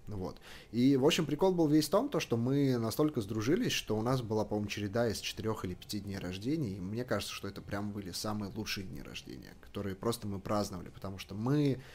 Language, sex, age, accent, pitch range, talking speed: Russian, male, 20-39, native, 100-125 Hz, 215 wpm